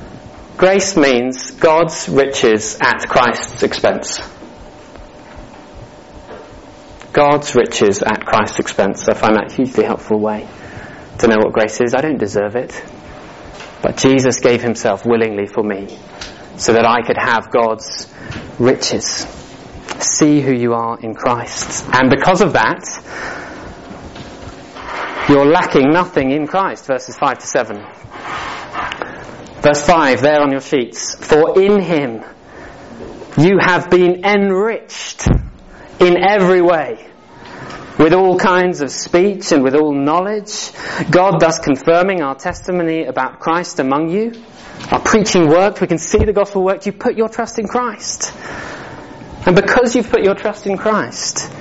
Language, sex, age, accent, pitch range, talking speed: English, male, 30-49, British, 140-195 Hz, 135 wpm